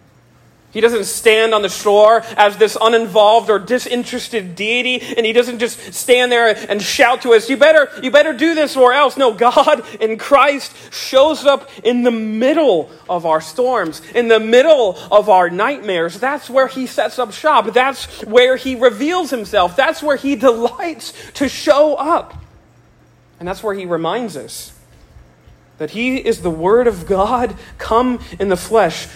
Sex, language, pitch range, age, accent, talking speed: male, English, 185-255 Hz, 40-59, American, 170 wpm